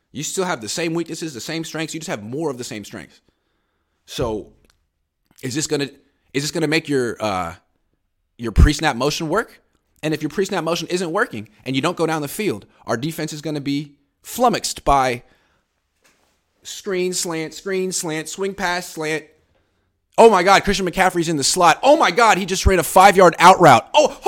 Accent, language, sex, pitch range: American, English, male, 120-180 Hz